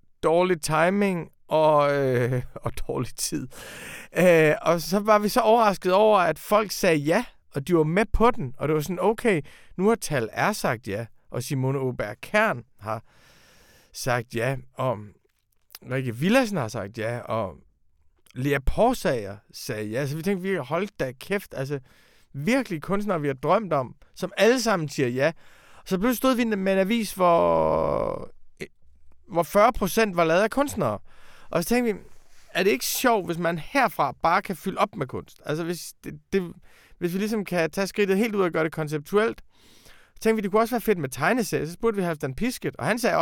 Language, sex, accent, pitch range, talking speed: Danish, male, native, 135-205 Hz, 195 wpm